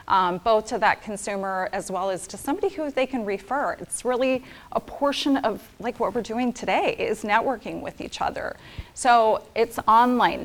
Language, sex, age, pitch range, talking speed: English, female, 30-49, 190-250 Hz, 185 wpm